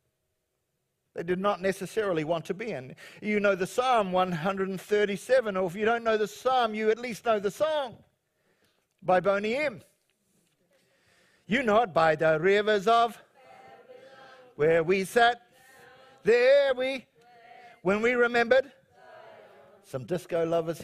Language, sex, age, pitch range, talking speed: English, male, 50-69, 185-265 Hz, 135 wpm